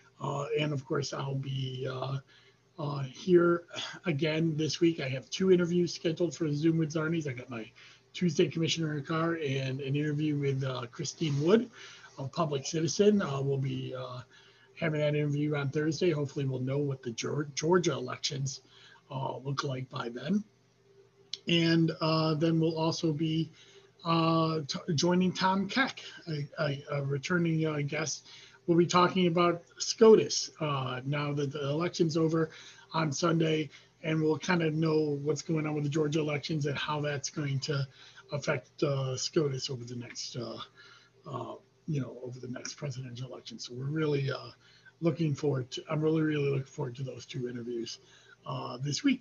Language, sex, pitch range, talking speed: English, male, 135-160 Hz, 170 wpm